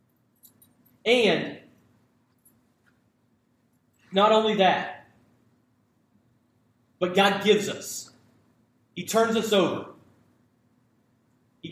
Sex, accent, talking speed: male, American, 65 wpm